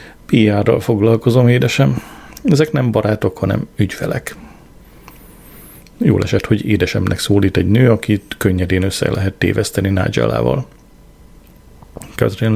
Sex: male